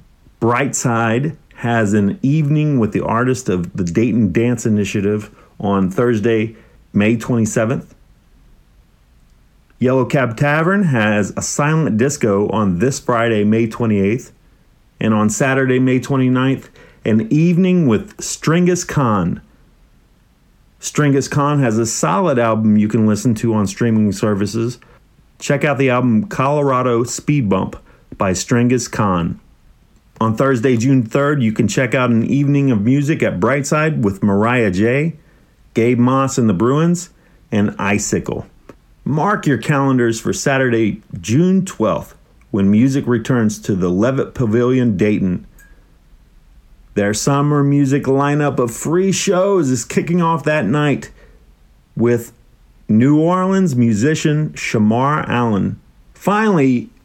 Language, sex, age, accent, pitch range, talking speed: English, male, 40-59, American, 110-145 Hz, 125 wpm